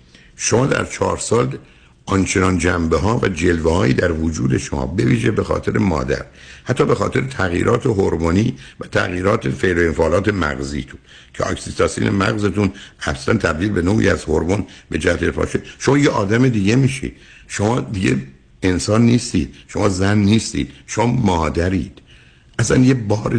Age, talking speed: 60-79, 140 wpm